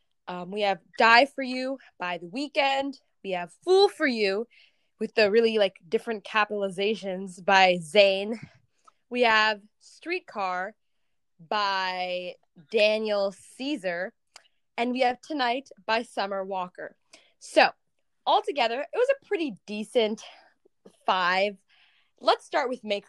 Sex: female